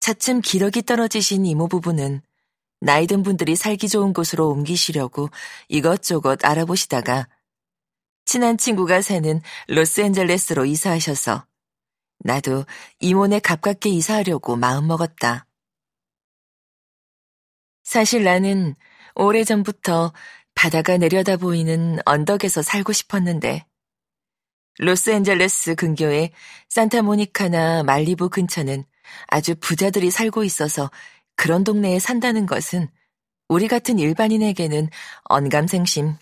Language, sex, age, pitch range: Korean, female, 40-59, 155-205 Hz